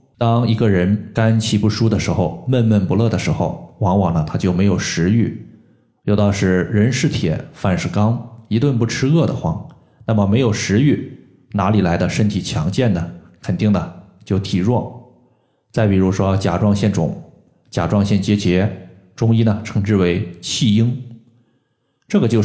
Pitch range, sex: 95-125 Hz, male